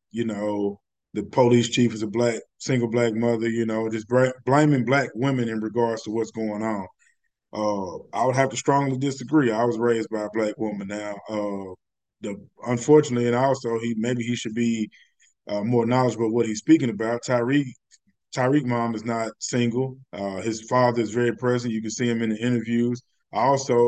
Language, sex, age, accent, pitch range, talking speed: English, male, 20-39, American, 110-130 Hz, 195 wpm